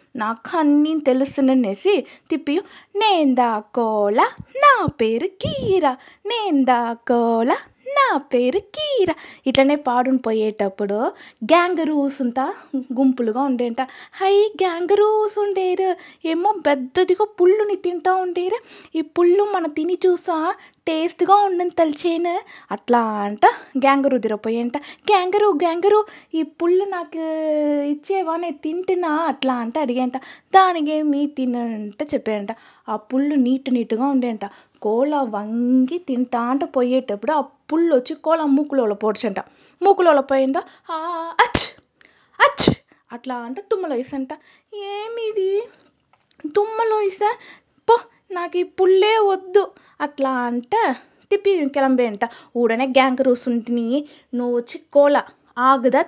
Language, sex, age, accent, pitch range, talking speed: Telugu, female, 20-39, native, 255-365 Hz, 100 wpm